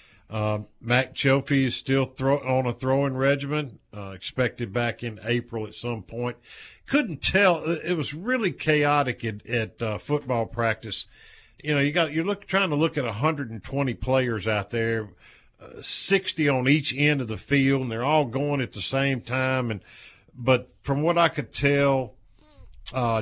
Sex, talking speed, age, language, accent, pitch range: male, 170 wpm, 50-69, English, American, 110-135 Hz